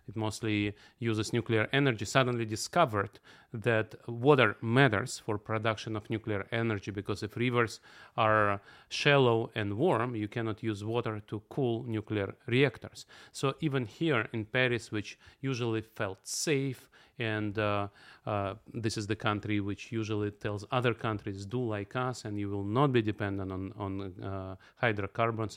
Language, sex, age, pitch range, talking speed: English, male, 40-59, 105-125 Hz, 150 wpm